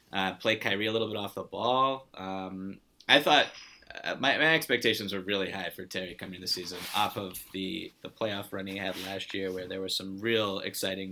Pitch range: 95-115 Hz